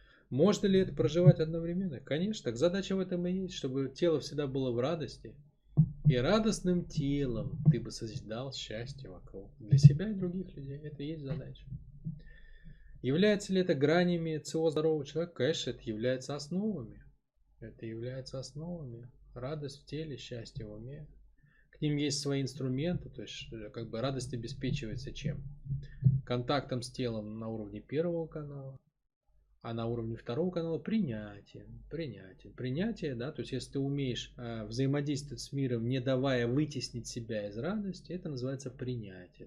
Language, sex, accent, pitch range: Russian, male, native, 120-160 Hz